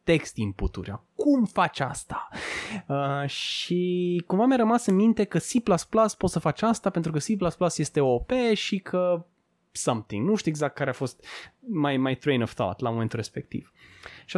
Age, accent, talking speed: 20-39, native, 165 wpm